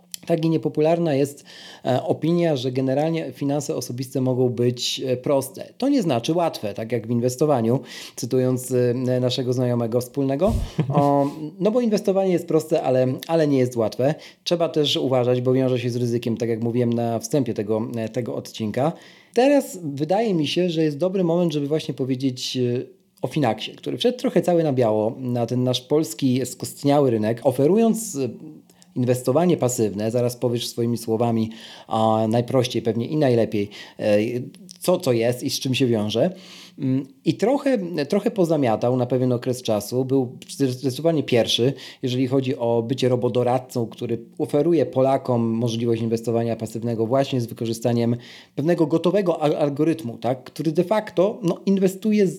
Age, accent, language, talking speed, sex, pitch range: 40-59, native, Polish, 150 wpm, male, 120-160 Hz